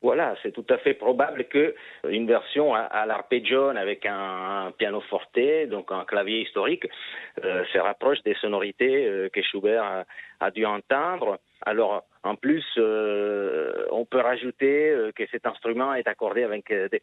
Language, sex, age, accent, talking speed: French, male, 40-59, French, 165 wpm